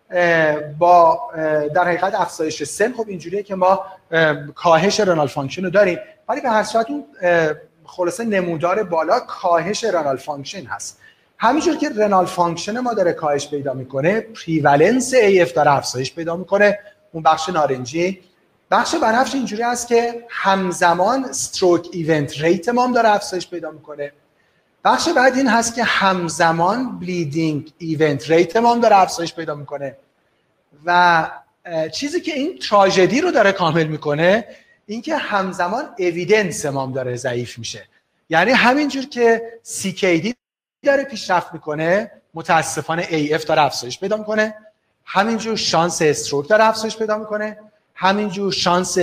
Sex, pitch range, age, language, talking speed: male, 160-215 Hz, 30-49, Persian, 130 wpm